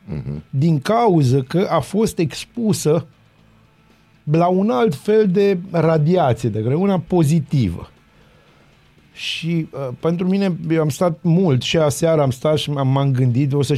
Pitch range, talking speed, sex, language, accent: 130-165 Hz, 140 wpm, male, Romanian, native